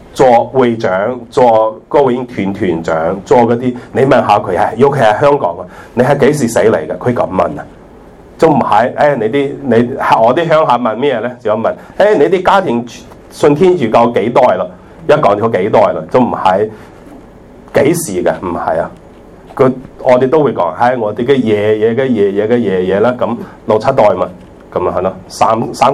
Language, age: Chinese, 30-49